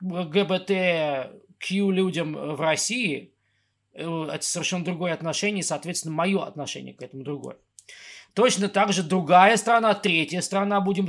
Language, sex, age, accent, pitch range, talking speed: Russian, male, 20-39, native, 160-200 Hz, 125 wpm